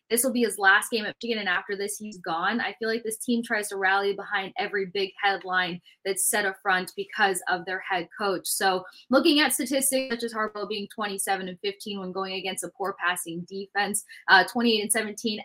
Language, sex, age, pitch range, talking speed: English, female, 20-39, 190-225 Hz, 220 wpm